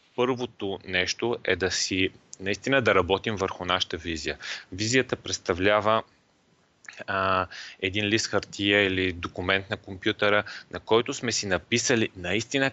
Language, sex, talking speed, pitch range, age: Bulgarian, male, 125 wpm, 95-120 Hz, 30-49